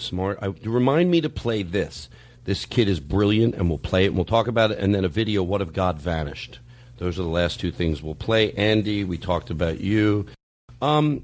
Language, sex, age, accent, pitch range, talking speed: English, male, 50-69, American, 95-125 Hz, 220 wpm